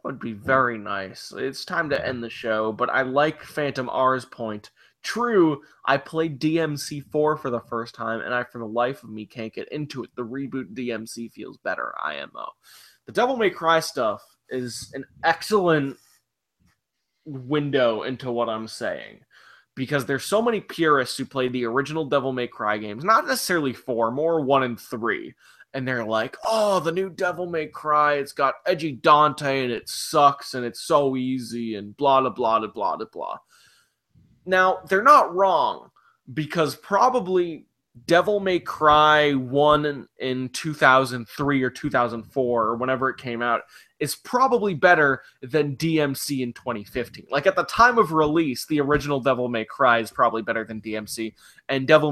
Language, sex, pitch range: English, male, 120-155 Hz